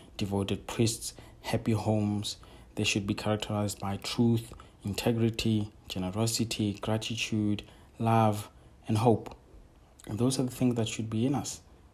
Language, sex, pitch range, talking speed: English, male, 100-115 Hz, 130 wpm